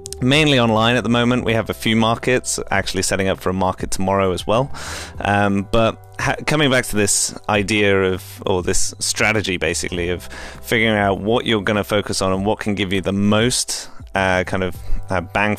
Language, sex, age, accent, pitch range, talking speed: English, male, 20-39, British, 95-110 Hz, 195 wpm